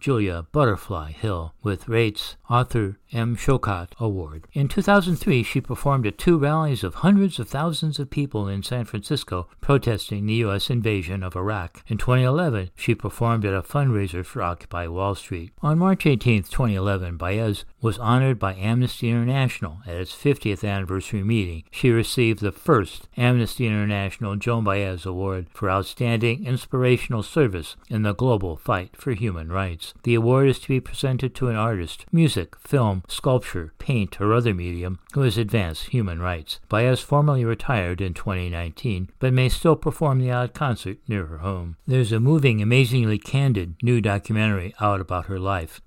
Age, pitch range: 60-79, 95-125 Hz